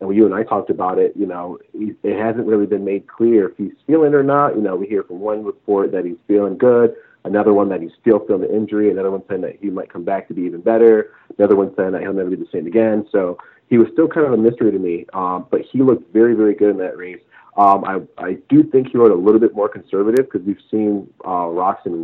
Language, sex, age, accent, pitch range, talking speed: English, male, 40-59, American, 90-115 Hz, 270 wpm